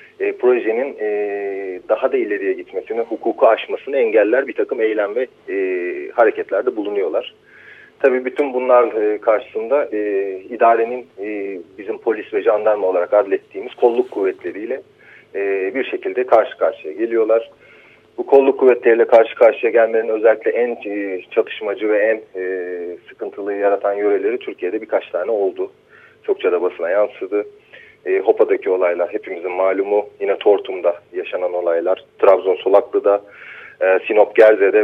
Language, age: Turkish, 40-59